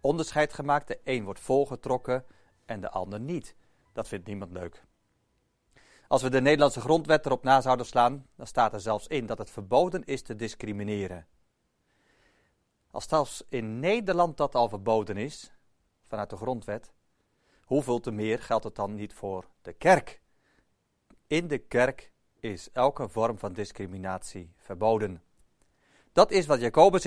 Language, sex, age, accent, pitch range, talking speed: Dutch, male, 40-59, Dutch, 105-135 Hz, 150 wpm